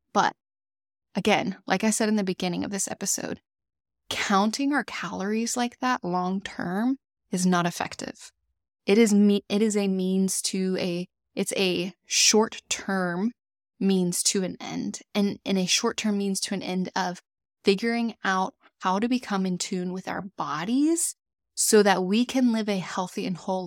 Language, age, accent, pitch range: English, 20-39, American, 180-210 Hz